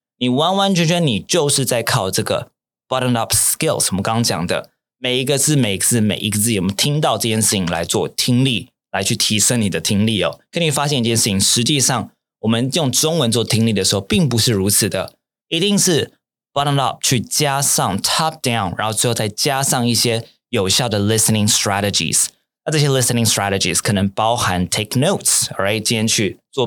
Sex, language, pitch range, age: male, Chinese, 100-135 Hz, 20-39